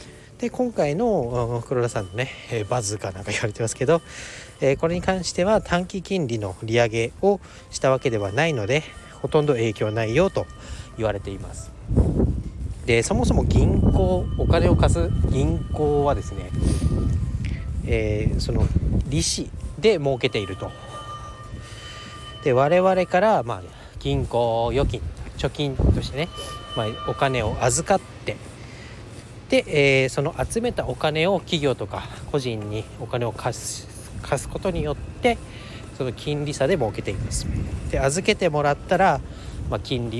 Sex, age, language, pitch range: male, 40-59, Japanese, 110-140 Hz